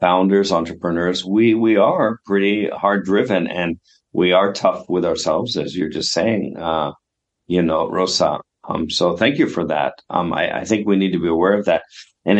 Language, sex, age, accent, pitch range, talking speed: English, male, 50-69, American, 90-100 Hz, 195 wpm